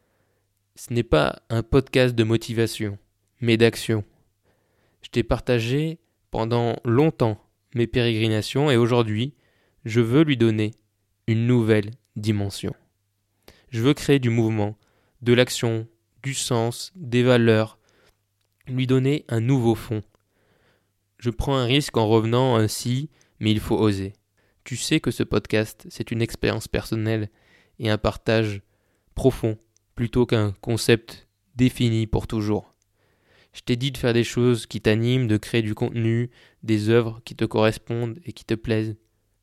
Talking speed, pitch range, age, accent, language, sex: 140 wpm, 105-125 Hz, 20-39, French, French, male